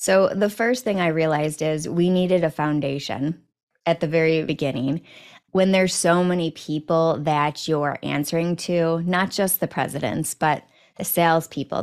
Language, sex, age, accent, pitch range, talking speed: English, female, 20-39, American, 155-190 Hz, 155 wpm